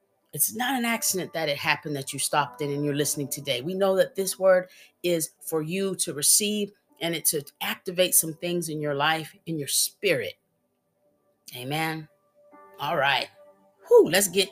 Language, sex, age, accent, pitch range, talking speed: English, female, 30-49, American, 155-190 Hz, 180 wpm